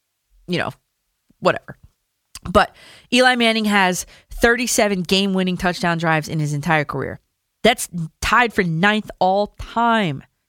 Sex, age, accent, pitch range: female, 30-49, American, 170-225 Hz